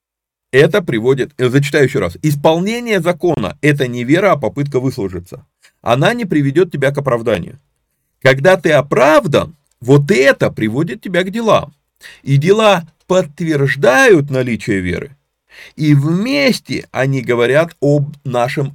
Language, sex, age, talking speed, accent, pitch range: Russian, male, 30-49, 125 wpm, native, 120-175 Hz